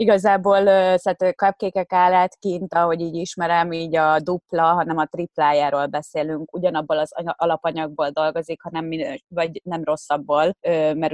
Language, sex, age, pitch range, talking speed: Hungarian, female, 20-39, 155-180 Hz, 135 wpm